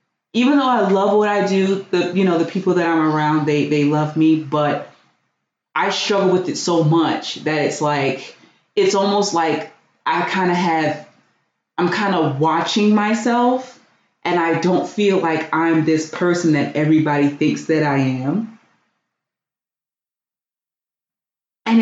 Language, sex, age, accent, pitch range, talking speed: English, female, 30-49, American, 160-225 Hz, 155 wpm